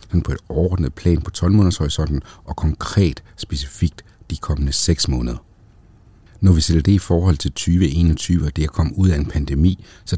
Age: 60-79